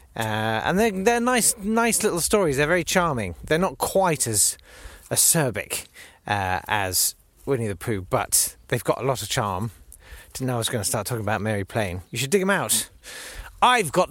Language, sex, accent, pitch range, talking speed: English, male, British, 95-155 Hz, 195 wpm